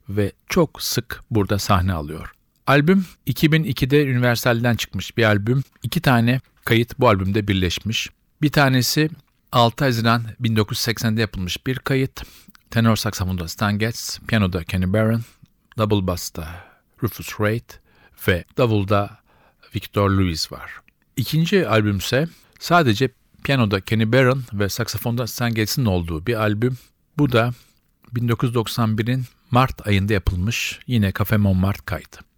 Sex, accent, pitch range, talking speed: male, native, 100-125 Hz, 120 wpm